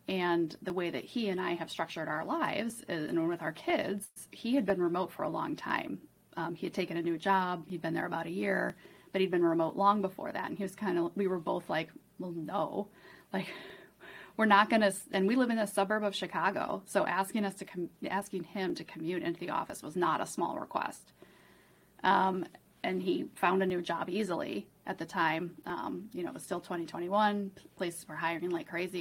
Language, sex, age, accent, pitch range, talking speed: English, female, 30-49, American, 175-205 Hz, 220 wpm